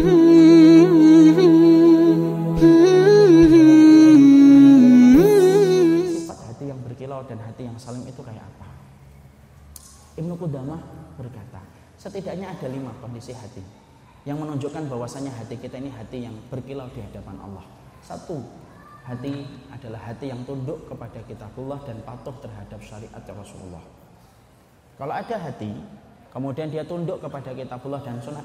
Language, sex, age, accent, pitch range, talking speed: Indonesian, male, 20-39, native, 120-155 Hz, 115 wpm